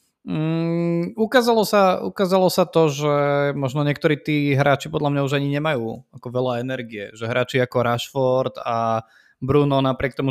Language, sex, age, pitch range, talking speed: Slovak, male, 20-39, 125-145 Hz, 155 wpm